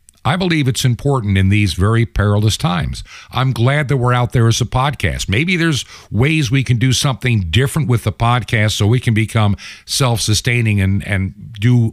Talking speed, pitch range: 180 wpm, 95-120 Hz